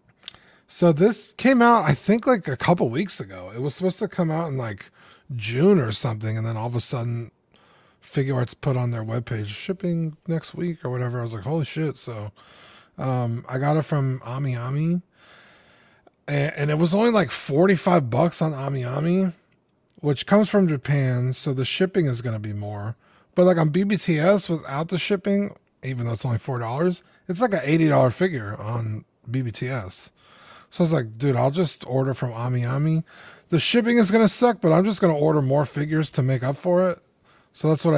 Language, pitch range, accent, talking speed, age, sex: English, 125-175 Hz, American, 195 wpm, 20-39, male